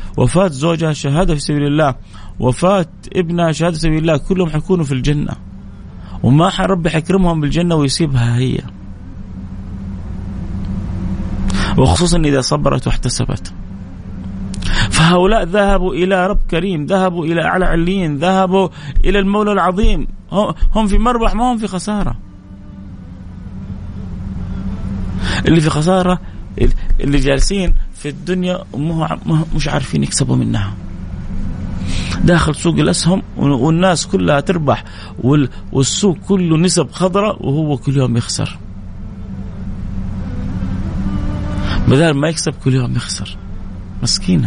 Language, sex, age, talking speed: Arabic, male, 30-49, 105 wpm